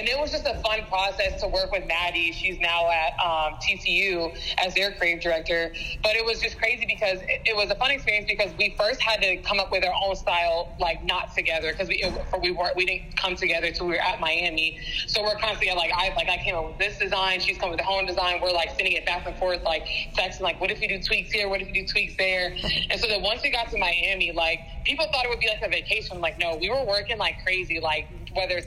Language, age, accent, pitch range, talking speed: English, 20-39, American, 170-205 Hz, 265 wpm